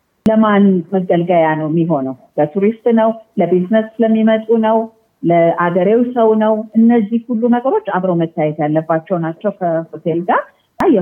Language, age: Amharic, 50-69